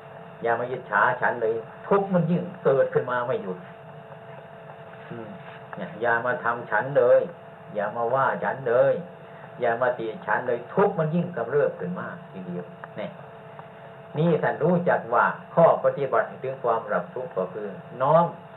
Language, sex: Thai, male